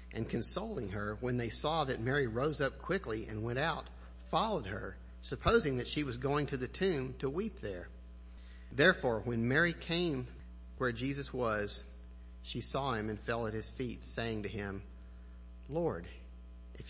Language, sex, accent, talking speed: English, male, American, 165 wpm